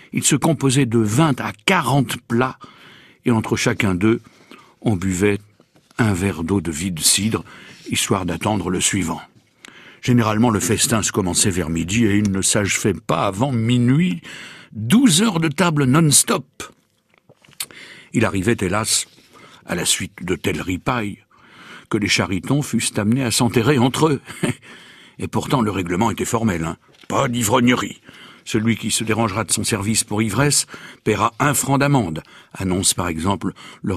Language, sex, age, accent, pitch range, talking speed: French, male, 60-79, French, 95-130 Hz, 155 wpm